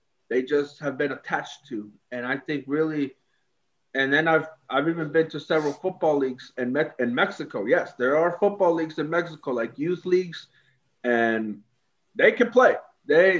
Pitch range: 140-180 Hz